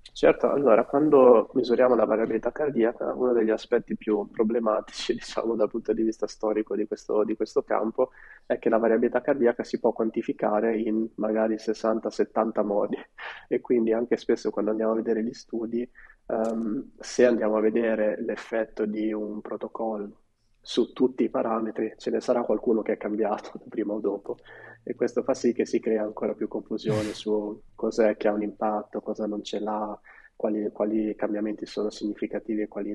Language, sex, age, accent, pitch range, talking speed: Italian, male, 20-39, native, 105-115 Hz, 170 wpm